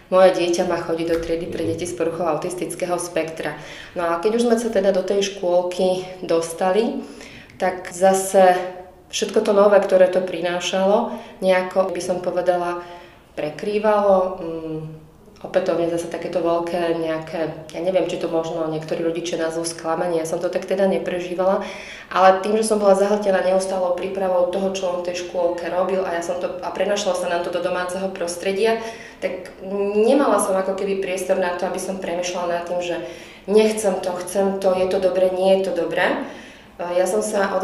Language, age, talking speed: Slovak, 30-49, 175 wpm